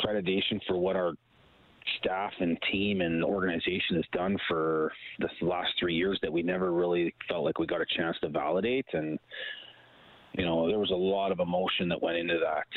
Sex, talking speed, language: male, 190 wpm, English